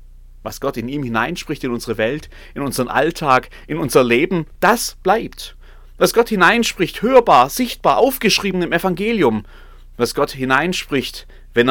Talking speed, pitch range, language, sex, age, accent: 145 wpm, 100-145 Hz, German, male, 30-49, German